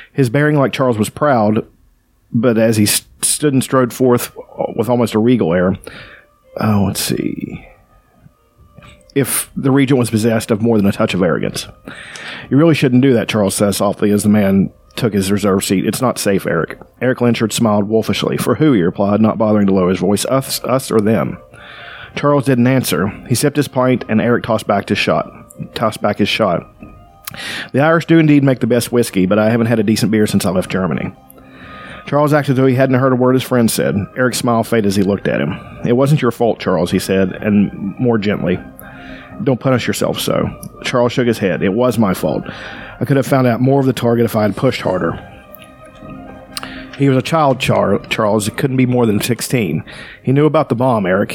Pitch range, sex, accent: 105-130 Hz, male, American